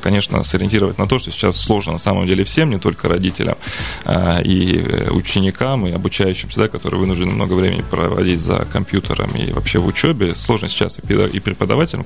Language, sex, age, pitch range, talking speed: Russian, male, 20-39, 95-115 Hz, 175 wpm